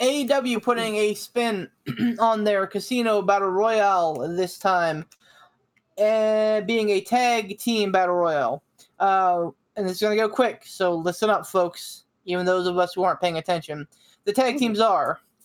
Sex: male